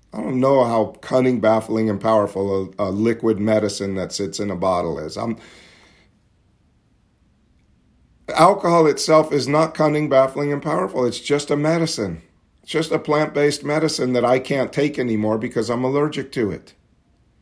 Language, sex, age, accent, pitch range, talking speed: English, male, 50-69, American, 110-150 Hz, 160 wpm